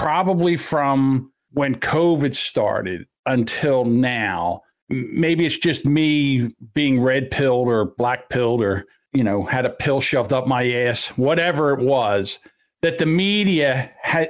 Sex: male